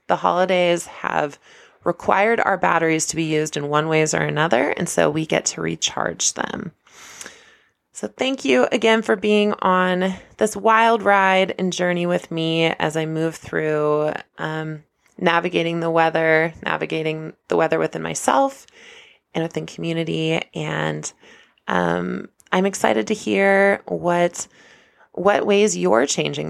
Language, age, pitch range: English, 20-39, 150-185 Hz